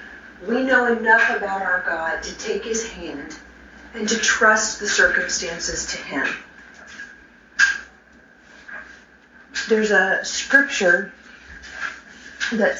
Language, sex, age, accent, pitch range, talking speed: English, female, 40-59, American, 185-270 Hz, 100 wpm